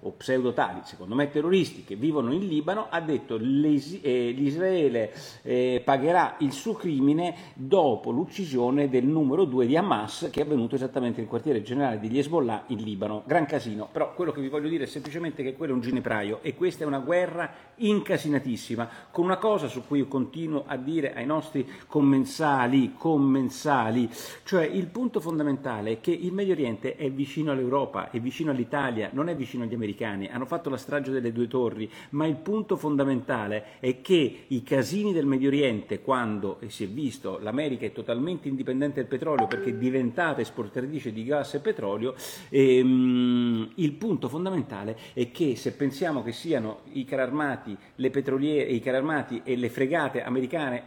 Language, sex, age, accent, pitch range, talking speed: Italian, male, 50-69, native, 120-150 Hz, 175 wpm